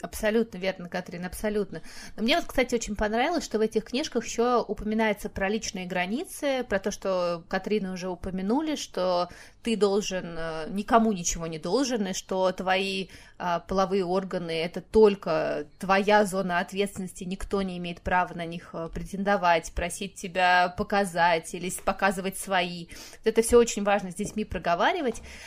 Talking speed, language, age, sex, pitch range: 155 wpm, Russian, 20-39, female, 190-235 Hz